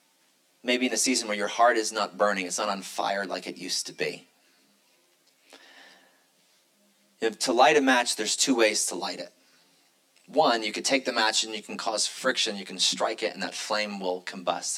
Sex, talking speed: male, 200 wpm